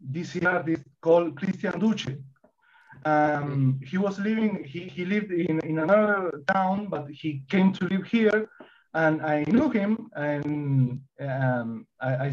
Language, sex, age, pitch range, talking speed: English, male, 30-49, 150-205 Hz, 140 wpm